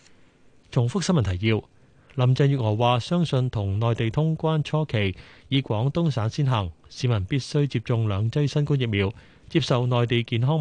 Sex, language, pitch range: male, Chinese, 110-145 Hz